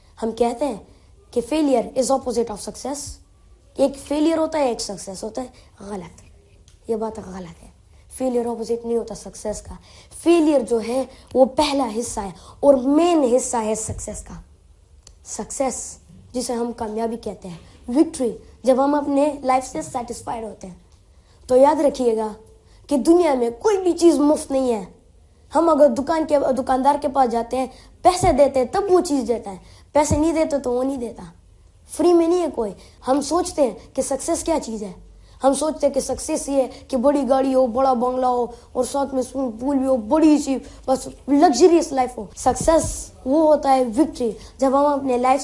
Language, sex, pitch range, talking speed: Urdu, female, 225-285 Hz, 190 wpm